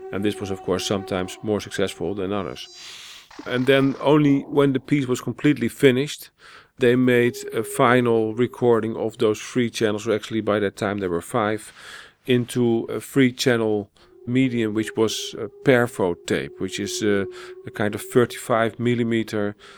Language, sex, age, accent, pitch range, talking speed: English, male, 40-59, Dutch, 105-125 Hz, 160 wpm